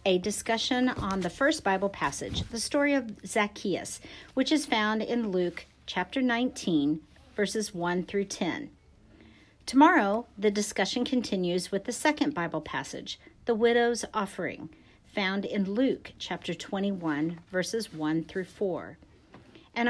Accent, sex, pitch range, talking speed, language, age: American, female, 175-235 Hz, 135 wpm, English, 50-69